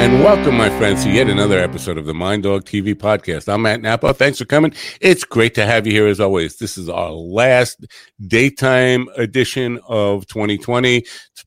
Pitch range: 95-120 Hz